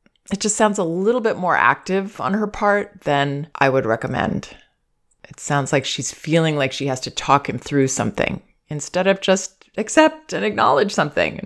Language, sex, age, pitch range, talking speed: English, female, 20-39, 140-215 Hz, 185 wpm